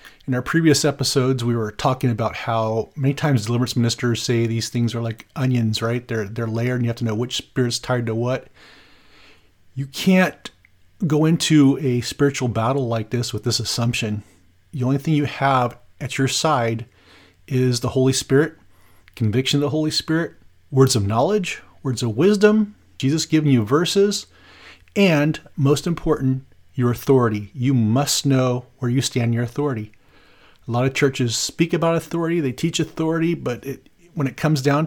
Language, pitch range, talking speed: English, 115-145 Hz, 175 wpm